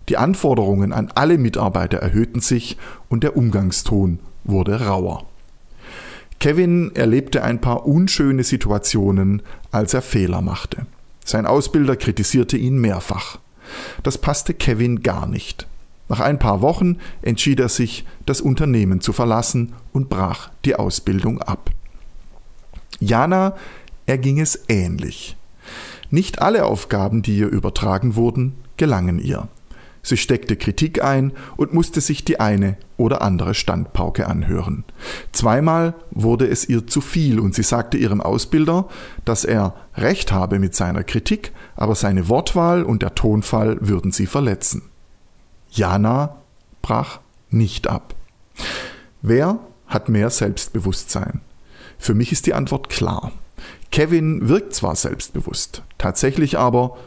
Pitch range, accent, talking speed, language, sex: 100-135 Hz, German, 125 wpm, German, male